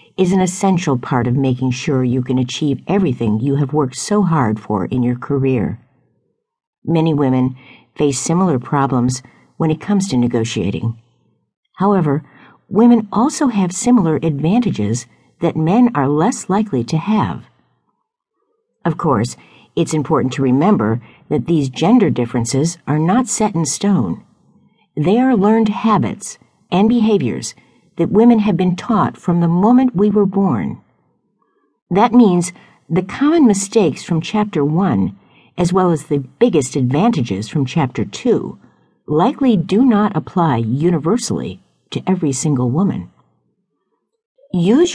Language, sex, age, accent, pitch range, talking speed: English, female, 50-69, American, 140-210 Hz, 135 wpm